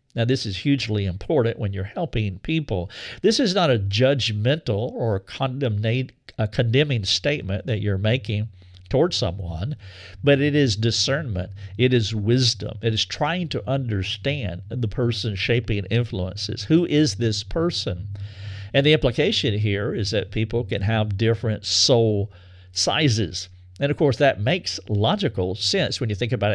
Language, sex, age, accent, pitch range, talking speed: English, male, 50-69, American, 100-130 Hz, 155 wpm